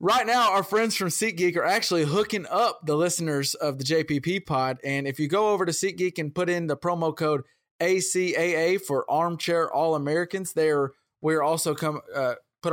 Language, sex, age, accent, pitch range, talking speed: English, male, 20-39, American, 140-175 Hz, 200 wpm